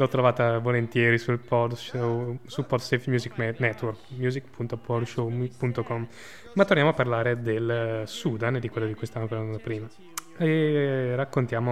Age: 20-39